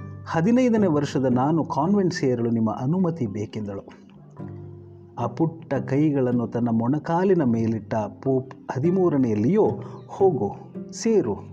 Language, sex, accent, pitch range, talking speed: Kannada, male, native, 115-165 Hz, 95 wpm